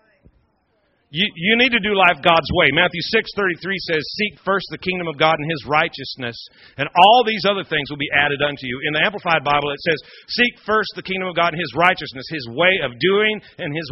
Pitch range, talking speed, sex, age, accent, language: 150-195 Hz, 230 wpm, male, 40-59, American, English